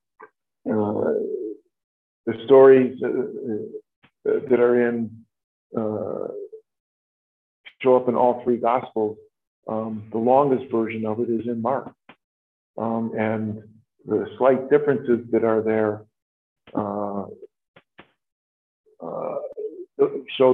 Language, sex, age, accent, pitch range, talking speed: English, male, 50-69, American, 110-135 Hz, 100 wpm